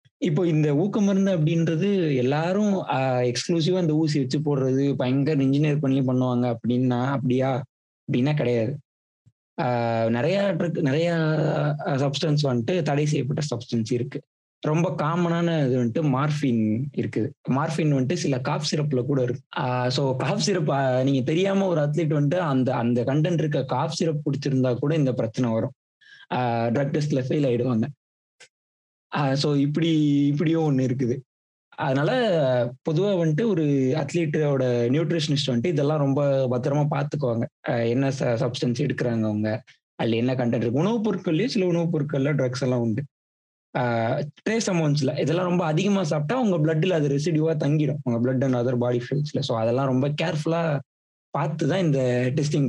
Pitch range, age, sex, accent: 125-160 Hz, 20-39, male, native